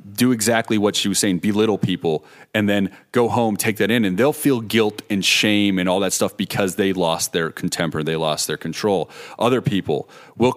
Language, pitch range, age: English, 95-125 Hz, 30-49